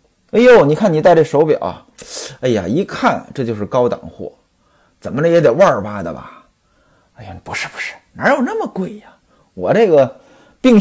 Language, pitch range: Chinese, 195-265 Hz